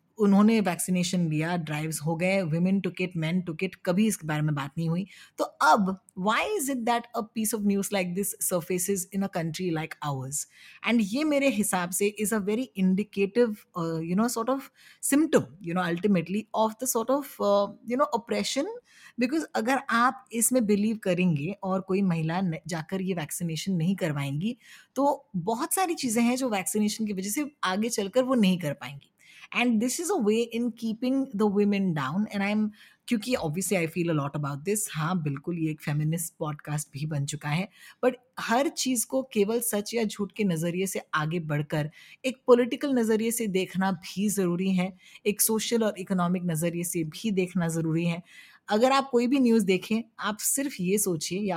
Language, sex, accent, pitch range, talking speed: Hindi, female, native, 175-230 Hz, 190 wpm